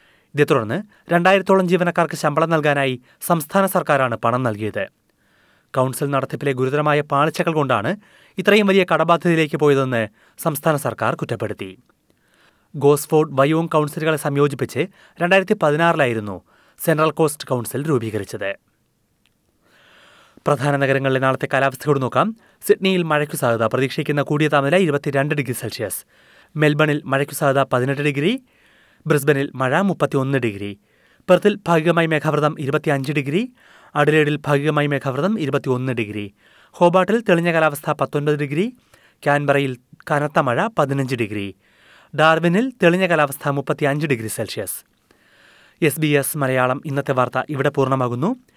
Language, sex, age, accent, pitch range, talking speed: Malayalam, male, 30-49, native, 130-160 Hz, 110 wpm